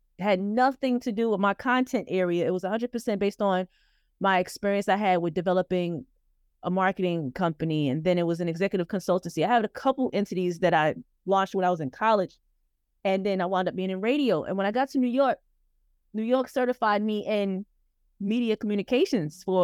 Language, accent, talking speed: English, American, 200 wpm